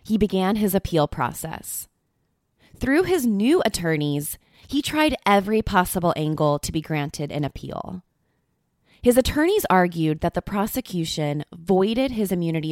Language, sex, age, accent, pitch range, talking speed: English, female, 20-39, American, 155-205 Hz, 130 wpm